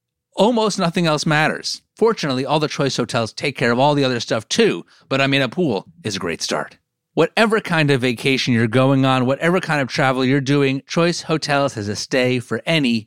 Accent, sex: American, male